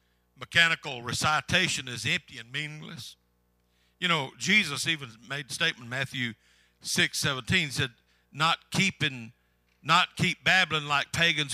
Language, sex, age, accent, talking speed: English, male, 60-79, American, 125 wpm